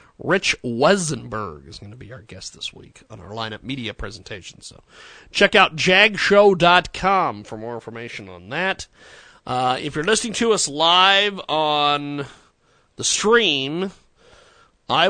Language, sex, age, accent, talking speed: English, male, 40-59, American, 145 wpm